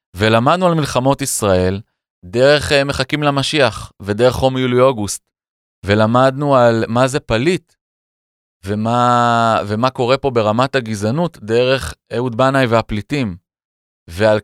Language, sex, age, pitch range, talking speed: Hebrew, male, 30-49, 105-140 Hz, 110 wpm